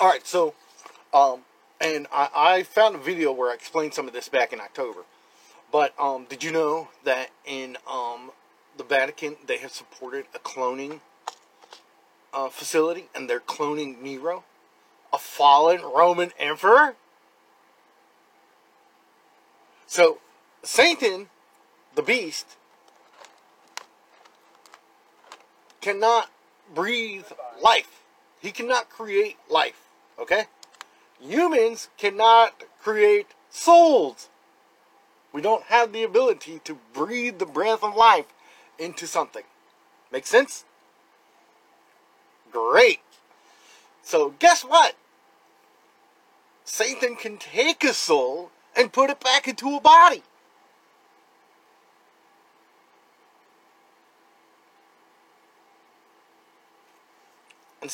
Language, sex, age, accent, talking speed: English, male, 40-59, American, 95 wpm